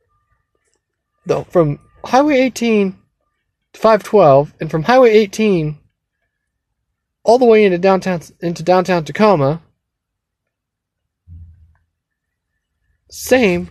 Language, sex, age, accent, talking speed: English, male, 20-39, American, 85 wpm